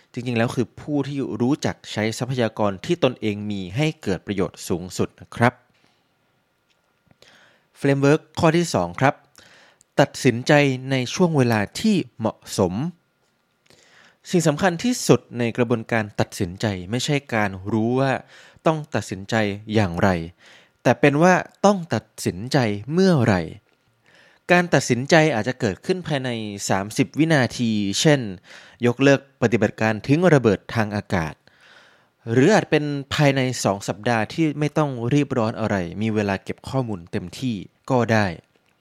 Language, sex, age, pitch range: Thai, male, 20-39, 105-140 Hz